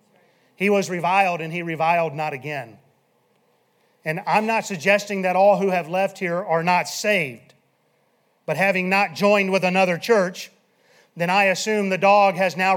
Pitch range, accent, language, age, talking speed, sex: 160-210 Hz, American, English, 40-59, 165 wpm, male